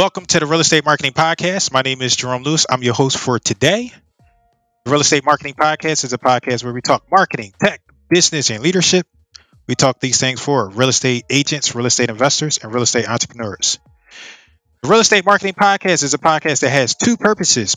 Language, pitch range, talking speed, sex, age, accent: English, 120-160 Hz, 205 wpm, male, 20-39, American